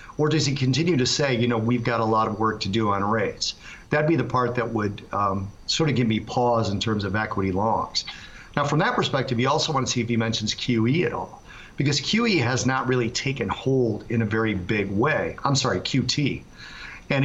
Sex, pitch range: male, 110-130 Hz